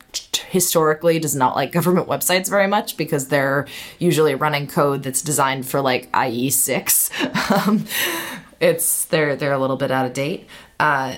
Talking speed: 160 wpm